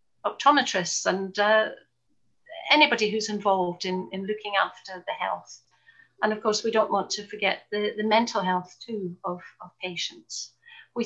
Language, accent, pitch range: English, British, 190-225 Hz